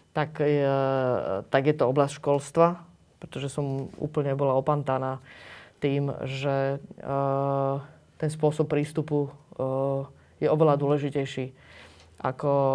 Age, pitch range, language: 20-39, 135-150 Hz, Slovak